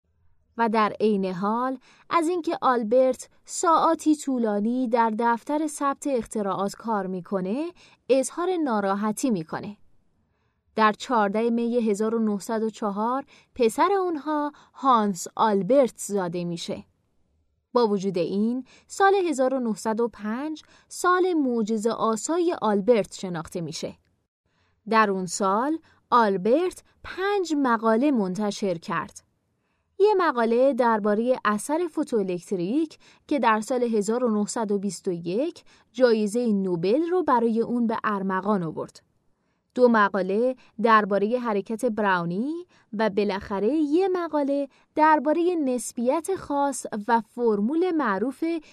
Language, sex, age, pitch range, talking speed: Persian, female, 20-39, 210-275 Hz, 95 wpm